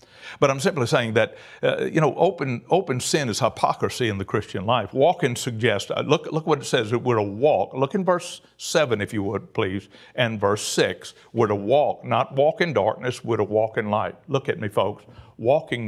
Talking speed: 215 wpm